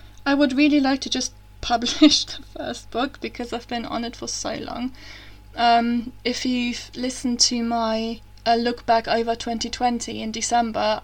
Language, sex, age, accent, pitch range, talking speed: English, female, 20-39, British, 210-245 Hz, 170 wpm